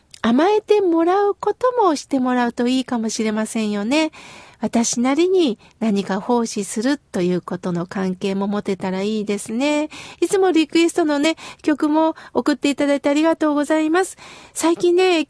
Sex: female